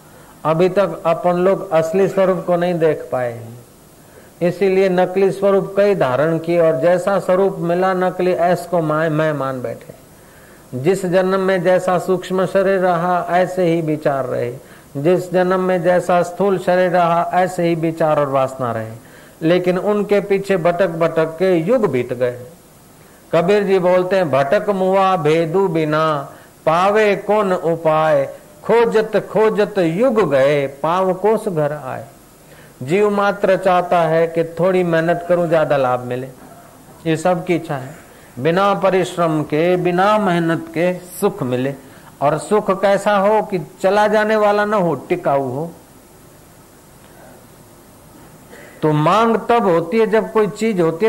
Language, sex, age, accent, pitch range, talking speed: Hindi, male, 50-69, native, 160-195 Hz, 130 wpm